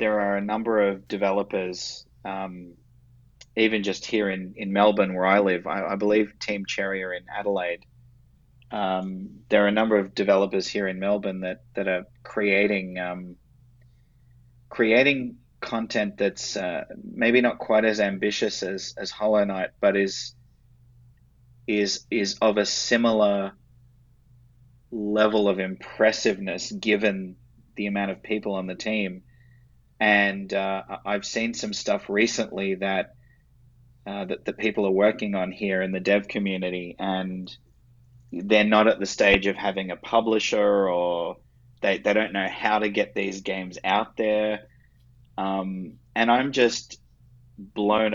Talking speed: 145 wpm